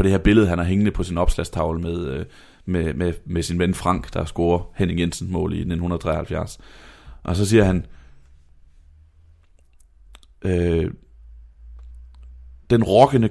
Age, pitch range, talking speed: 30-49, 85-105 Hz, 120 wpm